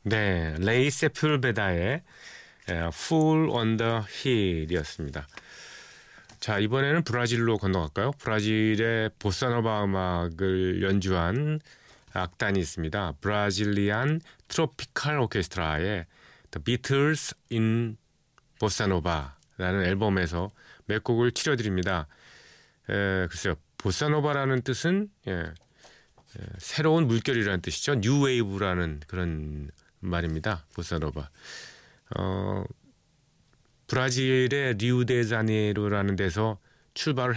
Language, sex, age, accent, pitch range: Korean, male, 40-59, native, 95-135 Hz